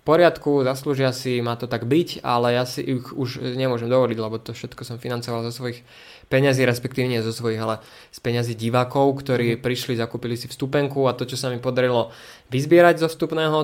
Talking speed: 195 wpm